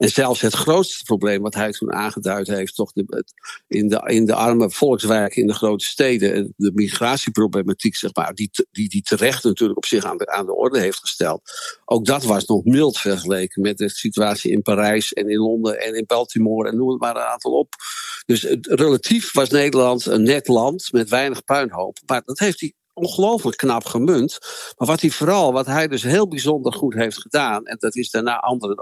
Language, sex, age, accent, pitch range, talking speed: Dutch, male, 60-79, Dutch, 105-145 Hz, 200 wpm